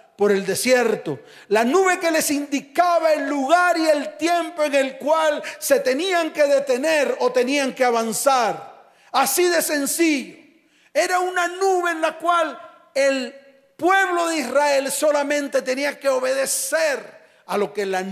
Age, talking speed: 40-59, 150 wpm